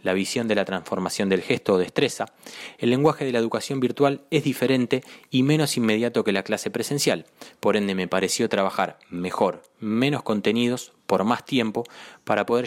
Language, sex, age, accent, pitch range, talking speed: Spanish, male, 20-39, Argentinian, 100-125 Hz, 175 wpm